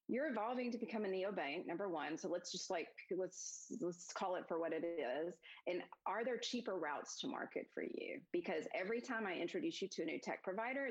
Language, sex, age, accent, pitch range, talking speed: English, female, 30-49, American, 175-265 Hz, 220 wpm